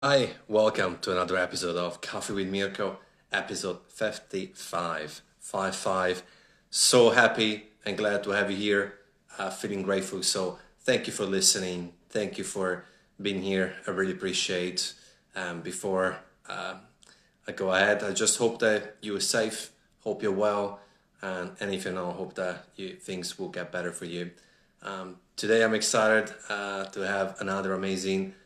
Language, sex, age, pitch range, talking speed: English, male, 30-49, 90-100 Hz, 160 wpm